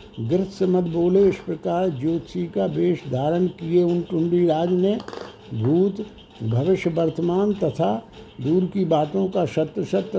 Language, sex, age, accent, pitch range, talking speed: Hindi, male, 60-79, native, 155-180 Hz, 130 wpm